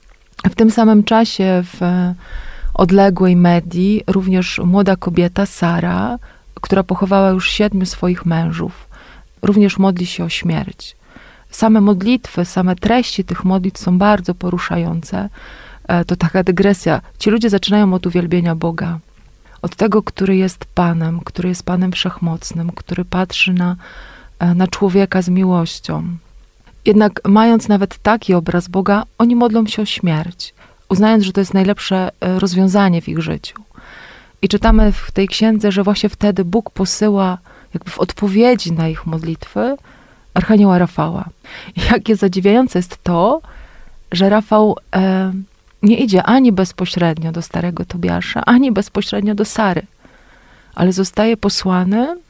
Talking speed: 135 wpm